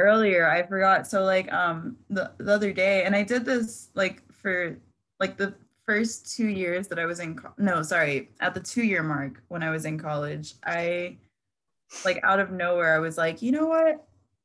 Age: 20-39